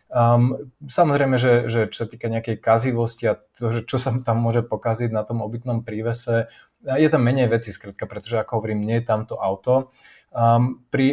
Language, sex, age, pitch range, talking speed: Slovak, male, 20-39, 110-120 Hz, 190 wpm